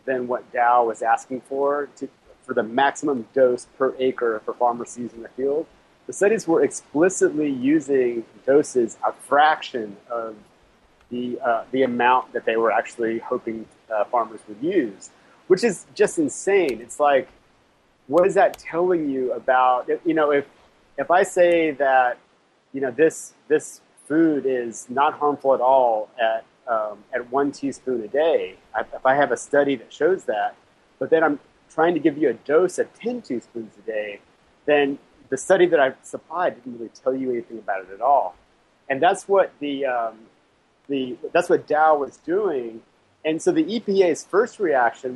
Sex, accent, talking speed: male, American, 175 wpm